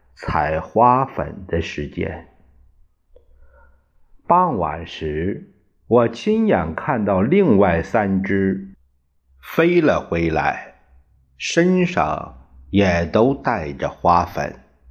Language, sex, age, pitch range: Chinese, male, 50-69, 75-110 Hz